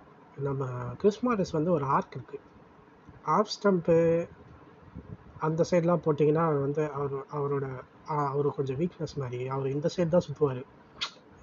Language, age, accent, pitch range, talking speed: Tamil, 20-39, native, 140-170 Hz, 120 wpm